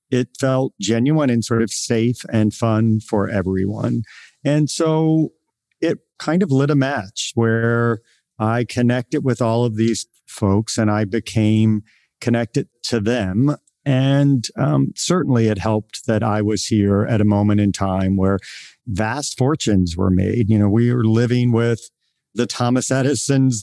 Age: 50-69